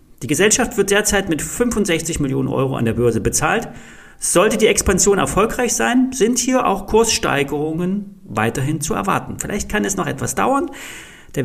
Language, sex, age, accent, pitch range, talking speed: German, male, 40-59, German, 120-180 Hz, 160 wpm